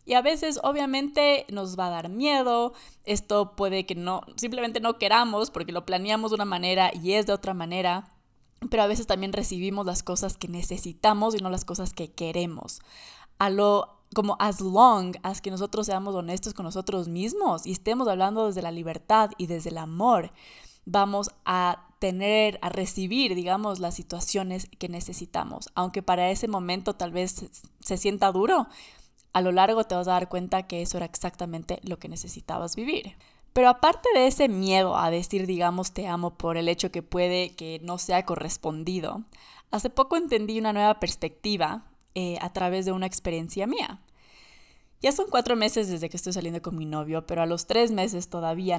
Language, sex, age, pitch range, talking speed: Spanish, female, 20-39, 175-210 Hz, 185 wpm